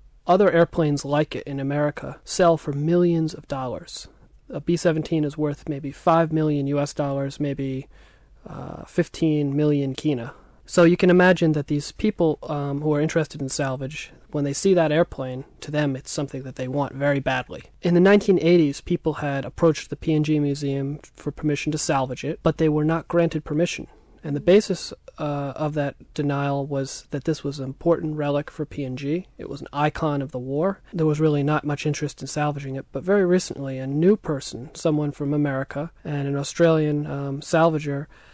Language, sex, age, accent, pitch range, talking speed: English, male, 30-49, American, 140-160 Hz, 185 wpm